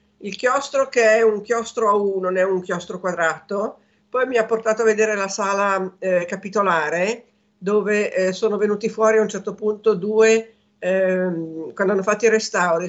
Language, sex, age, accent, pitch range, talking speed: Italian, female, 50-69, native, 175-215 Hz, 180 wpm